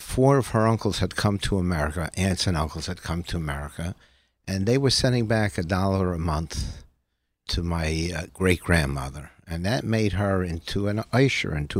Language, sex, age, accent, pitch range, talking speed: English, male, 60-79, American, 85-115 Hz, 185 wpm